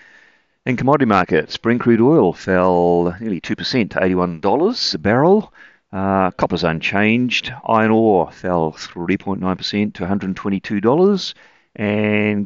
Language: English